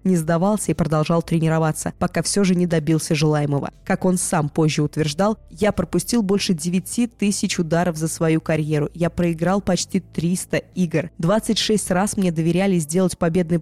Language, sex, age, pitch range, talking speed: Russian, female, 20-39, 165-205 Hz, 160 wpm